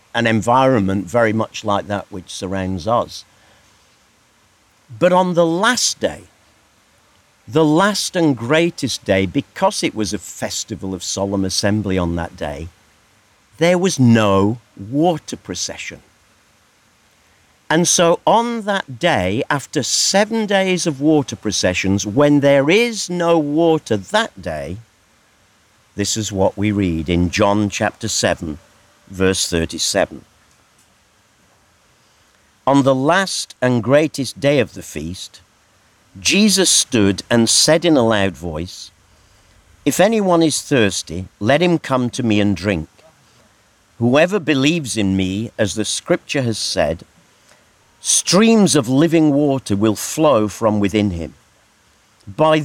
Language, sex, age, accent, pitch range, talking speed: English, male, 50-69, British, 100-155 Hz, 125 wpm